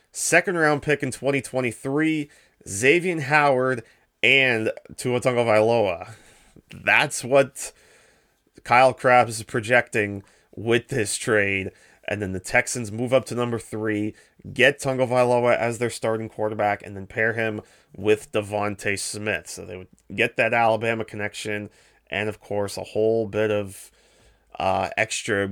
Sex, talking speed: male, 130 wpm